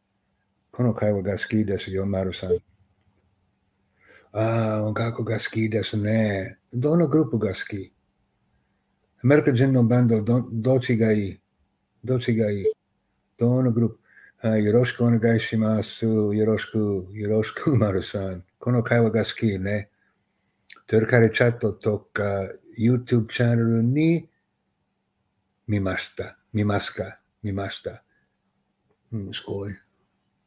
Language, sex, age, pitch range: English, male, 60-79, 100-120 Hz